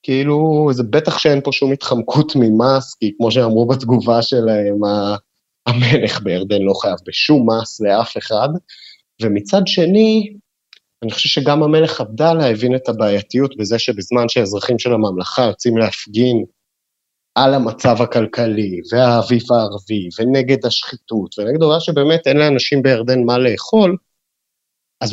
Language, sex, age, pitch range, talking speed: Hebrew, male, 30-49, 105-145 Hz, 130 wpm